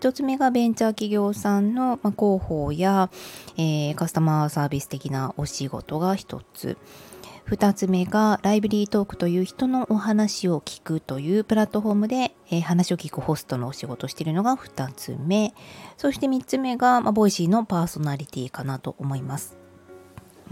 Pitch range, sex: 145-210 Hz, female